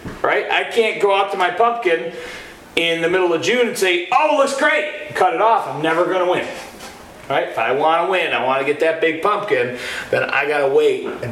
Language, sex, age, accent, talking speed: English, male, 40-59, American, 245 wpm